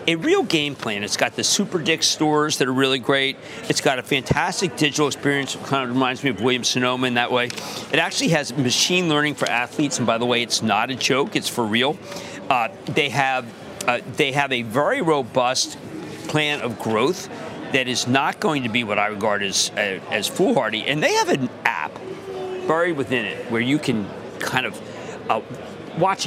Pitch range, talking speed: 125-160 Hz, 205 wpm